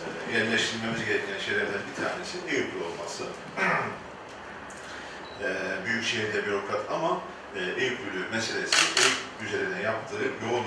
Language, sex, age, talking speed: Turkish, male, 50-69, 90 wpm